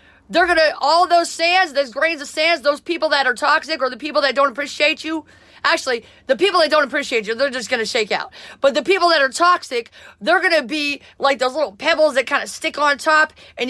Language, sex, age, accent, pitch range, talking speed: English, female, 30-49, American, 265-315 Hz, 245 wpm